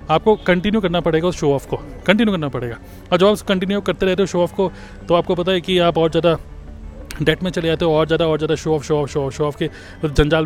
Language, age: Hindi, 30-49